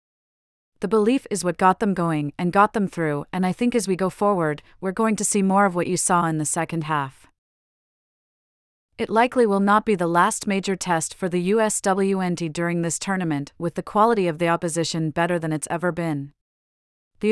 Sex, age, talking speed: female, 30-49, 200 wpm